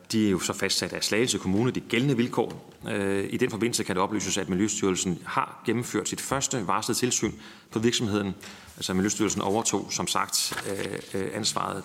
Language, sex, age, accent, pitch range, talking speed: Danish, male, 30-49, native, 95-110 Hz, 165 wpm